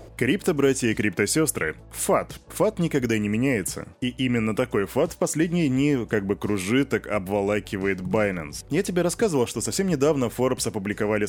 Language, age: Russian, 20-39